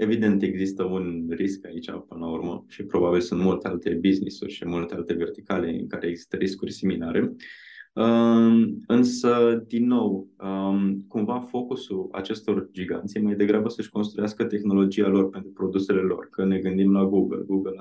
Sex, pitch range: male, 95-110 Hz